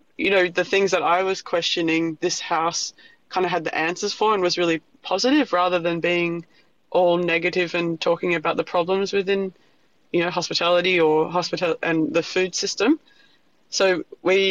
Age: 20-39